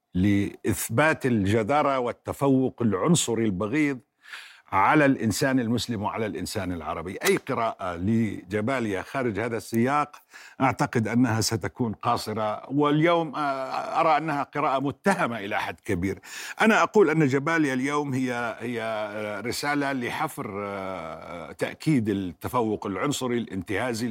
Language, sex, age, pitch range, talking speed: Arabic, male, 50-69, 105-140 Hz, 105 wpm